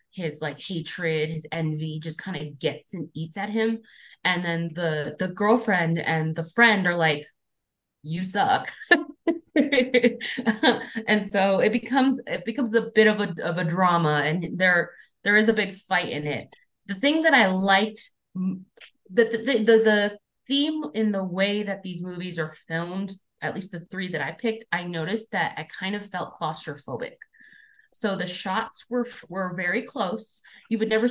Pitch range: 165-215 Hz